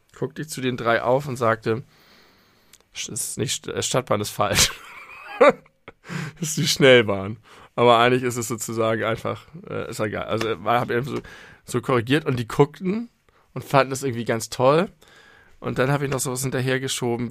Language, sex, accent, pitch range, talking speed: German, male, German, 110-135 Hz, 185 wpm